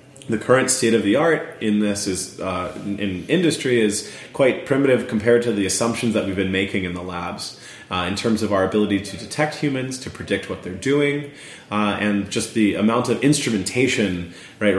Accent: American